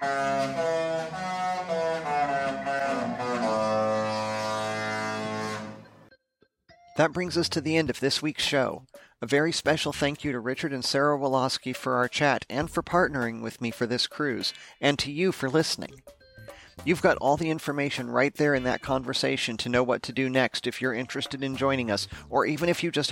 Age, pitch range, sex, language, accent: 40-59, 115-145 Hz, male, English, American